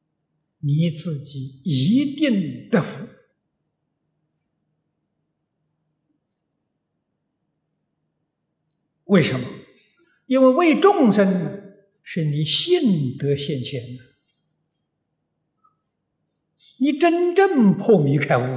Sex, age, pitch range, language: male, 60-79, 150-240 Hz, Chinese